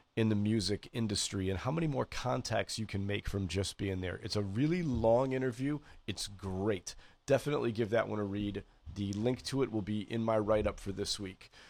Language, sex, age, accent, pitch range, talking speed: English, male, 40-59, American, 100-125 Hz, 210 wpm